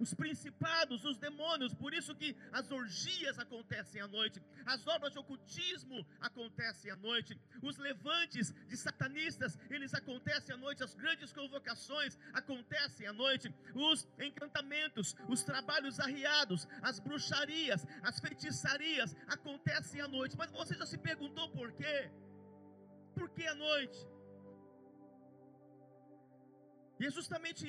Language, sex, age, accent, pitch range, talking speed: Portuguese, male, 50-69, Brazilian, 250-315 Hz, 130 wpm